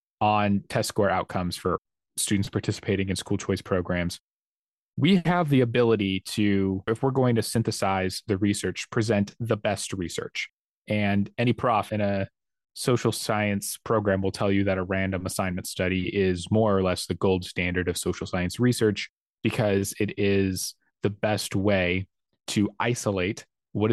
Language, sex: English, male